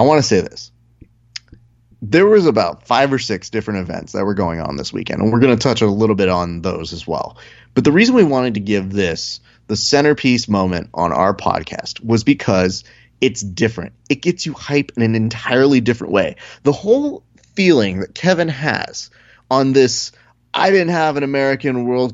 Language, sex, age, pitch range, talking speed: English, male, 30-49, 110-140 Hz, 195 wpm